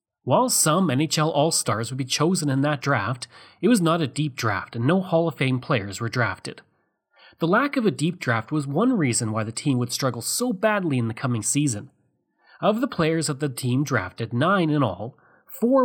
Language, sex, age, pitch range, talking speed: English, male, 30-49, 120-175 Hz, 210 wpm